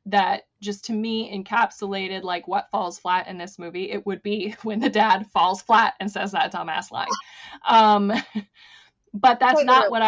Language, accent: English, American